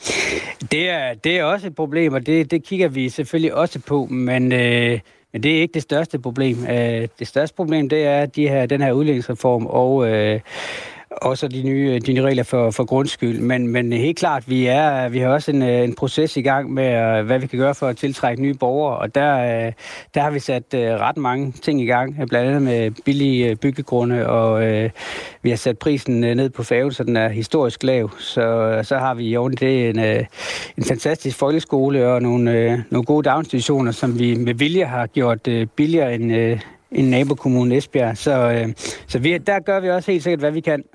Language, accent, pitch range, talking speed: Danish, native, 120-150 Hz, 205 wpm